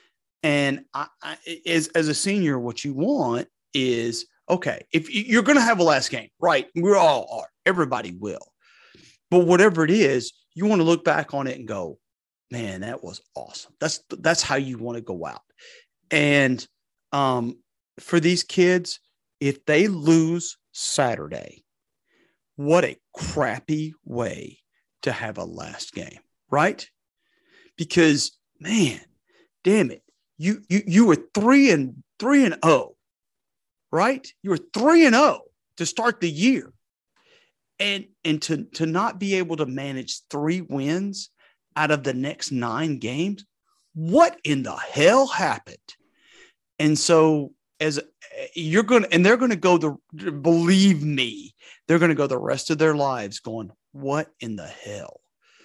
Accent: American